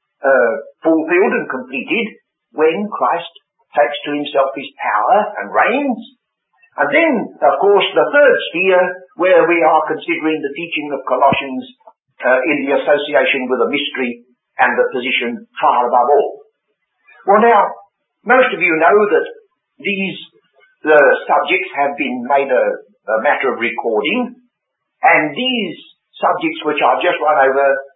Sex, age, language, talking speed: male, 60-79, English, 145 wpm